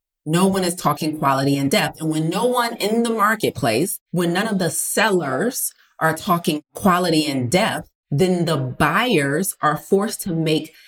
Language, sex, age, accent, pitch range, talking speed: English, female, 30-49, American, 155-200 Hz, 170 wpm